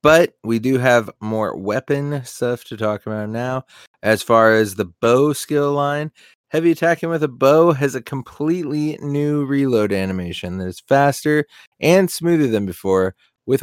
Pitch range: 95-135 Hz